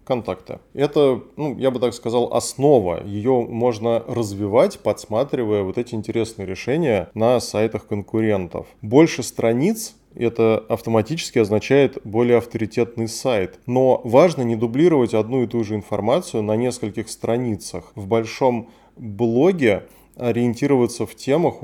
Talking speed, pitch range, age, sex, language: 130 wpm, 105-125 Hz, 20-39, male, Russian